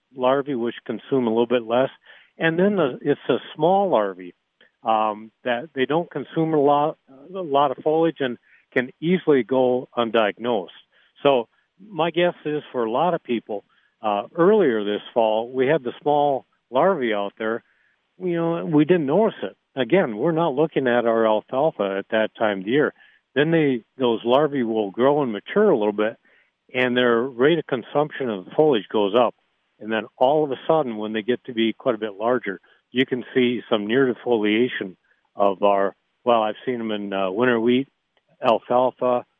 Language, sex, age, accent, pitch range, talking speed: English, male, 60-79, American, 110-140 Hz, 185 wpm